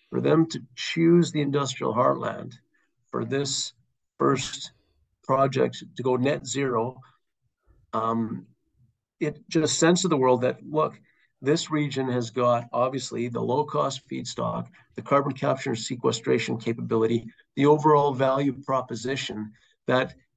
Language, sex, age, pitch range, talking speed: English, male, 50-69, 120-150 Hz, 125 wpm